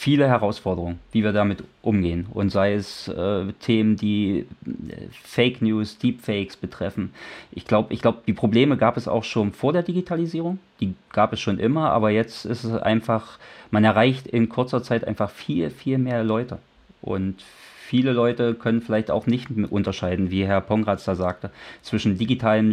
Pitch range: 100-120 Hz